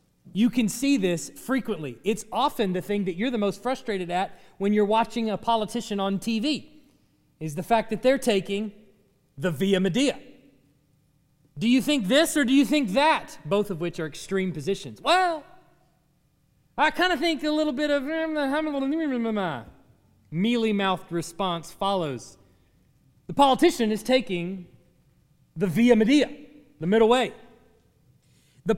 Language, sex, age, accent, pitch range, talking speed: English, male, 30-49, American, 160-255 Hz, 145 wpm